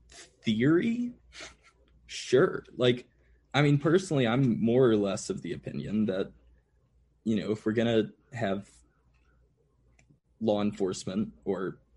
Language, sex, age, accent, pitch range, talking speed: English, male, 20-39, American, 95-130 Hz, 115 wpm